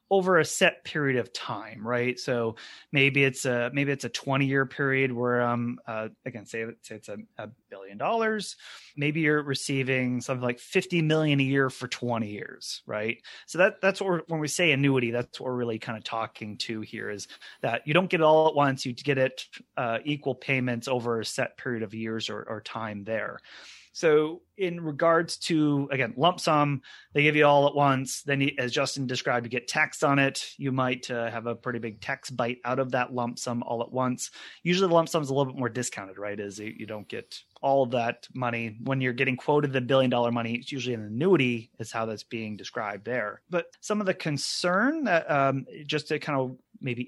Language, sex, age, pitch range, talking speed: English, male, 30-49, 120-145 Hz, 220 wpm